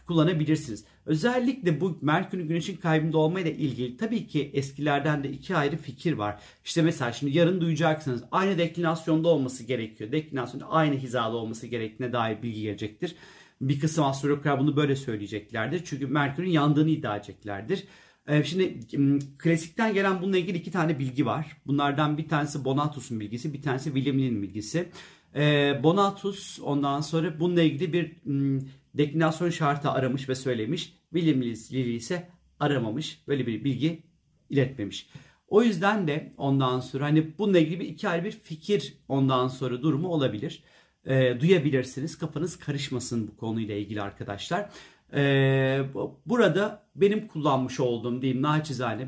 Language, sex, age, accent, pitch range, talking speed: Turkish, male, 40-59, native, 130-165 Hz, 140 wpm